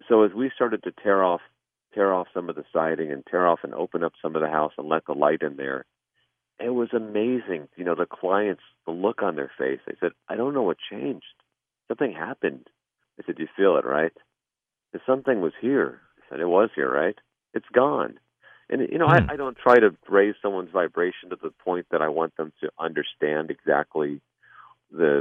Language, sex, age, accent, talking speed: English, male, 40-59, American, 210 wpm